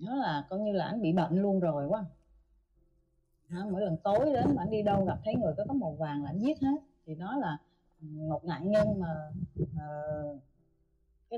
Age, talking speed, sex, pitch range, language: 20-39, 210 wpm, female, 165-240 Hz, Vietnamese